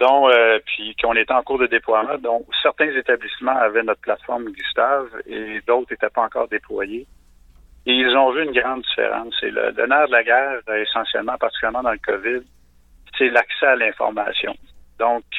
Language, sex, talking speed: French, male, 170 wpm